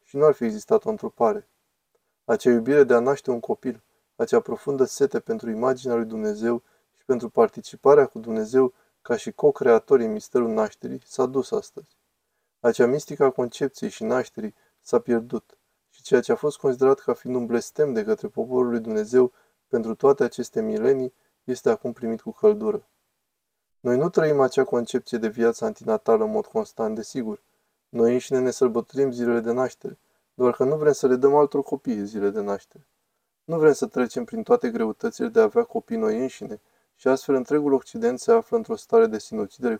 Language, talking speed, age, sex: Romanian, 180 wpm, 20-39, male